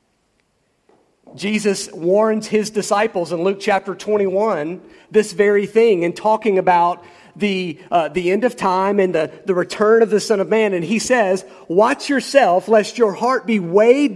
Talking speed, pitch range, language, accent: 165 wpm, 170-220 Hz, English, American